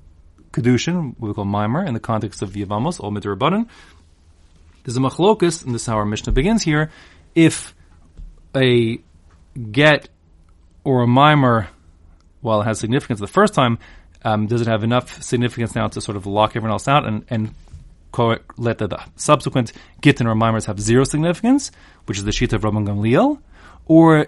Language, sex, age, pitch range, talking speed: English, male, 30-49, 95-125 Hz, 175 wpm